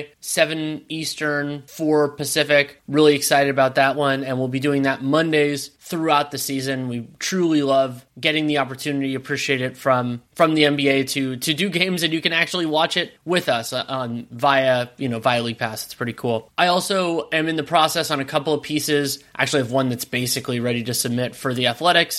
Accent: American